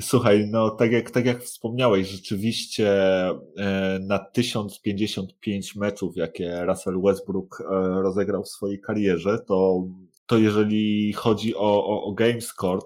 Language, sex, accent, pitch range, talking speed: Polish, male, native, 95-110 Hz, 125 wpm